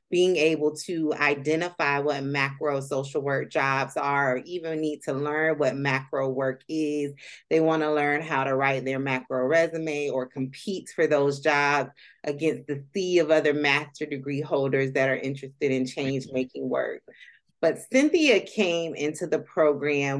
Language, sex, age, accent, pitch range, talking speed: English, female, 30-49, American, 140-165 Hz, 160 wpm